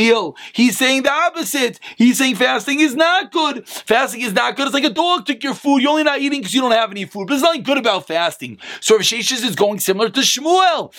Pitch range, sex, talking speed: 205-270 Hz, male, 245 wpm